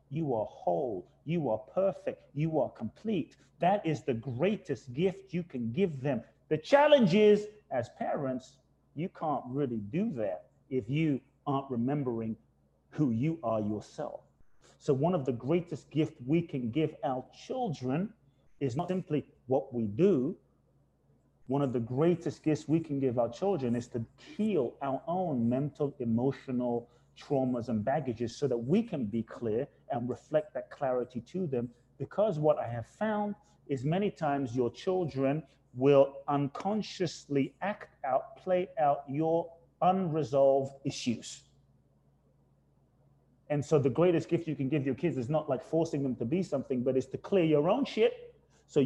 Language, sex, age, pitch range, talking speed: English, male, 30-49, 130-170 Hz, 160 wpm